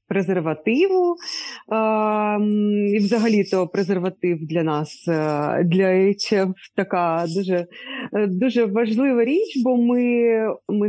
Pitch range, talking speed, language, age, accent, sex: 180-230 Hz, 90 wpm, Ukrainian, 30-49, native, female